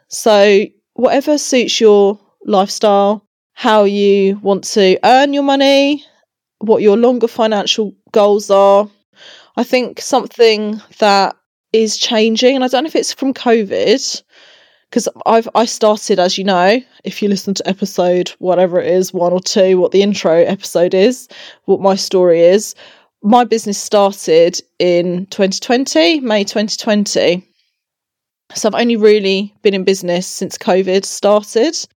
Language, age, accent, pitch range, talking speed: English, 20-39, British, 185-225 Hz, 145 wpm